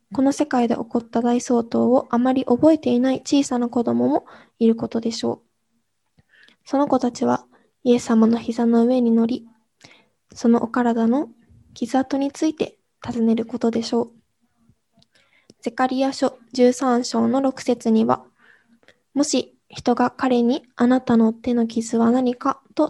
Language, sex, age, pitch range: Japanese, female, 20-39, 230-255 Hz